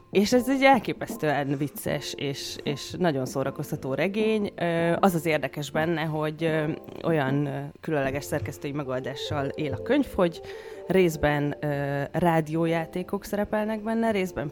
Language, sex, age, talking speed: Hungarian, female, 20-39, 115 wpm